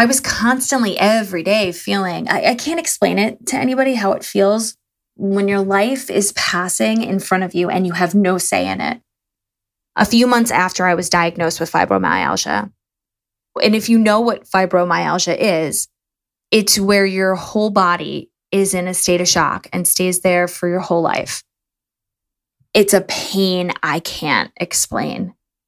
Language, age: English, 20-39